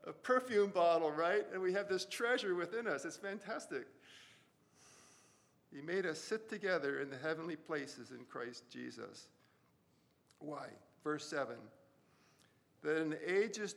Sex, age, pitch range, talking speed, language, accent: male, 50-69, 135-185 Hz, 140 wpm, English, American